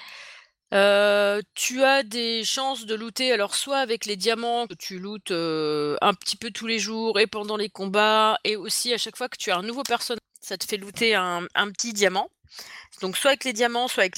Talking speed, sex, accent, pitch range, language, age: 215 wpm, female, French, 185-250 Hz, French, 30-49